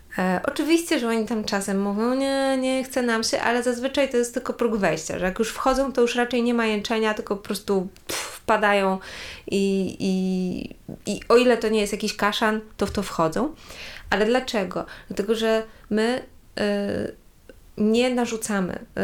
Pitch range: 190-225 Hz